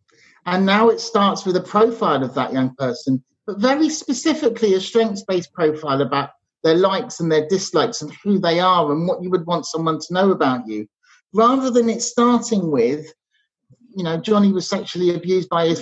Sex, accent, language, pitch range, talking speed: male, British, English, 160-220 Hz, 190 wpm